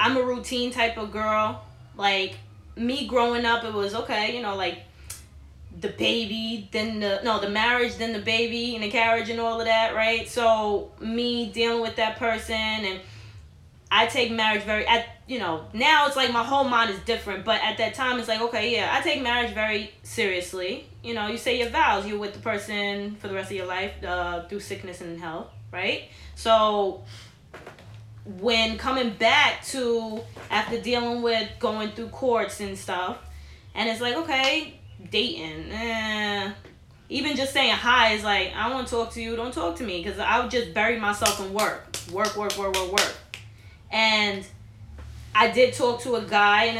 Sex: female